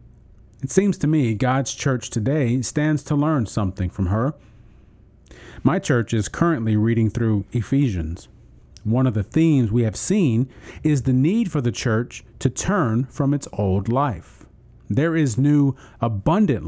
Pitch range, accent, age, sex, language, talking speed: 105-150 Hz, American, 40-59, male, English, 155 wpm